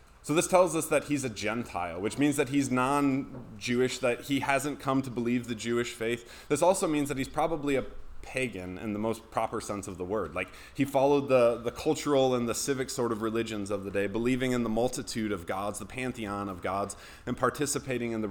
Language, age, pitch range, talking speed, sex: English, 20-39, 105-140 Hz, 220 wpm, male